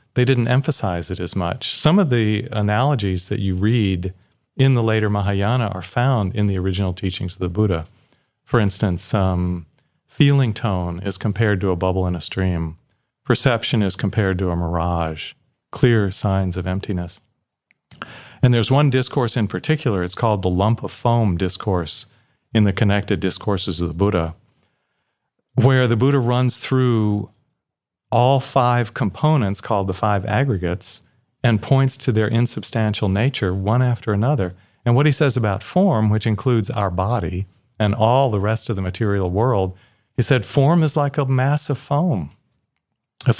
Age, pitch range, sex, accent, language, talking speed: 40-59, 95-130 Hz, male, American, English, 165 wpm